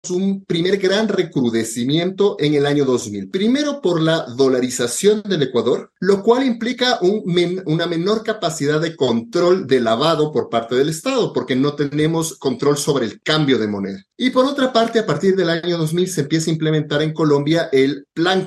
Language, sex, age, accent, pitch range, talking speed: Spanish, male, 30-49, Mexican, 135-210 Hz, 180 wpm